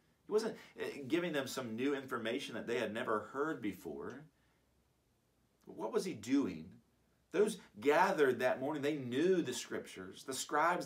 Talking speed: 150 wpm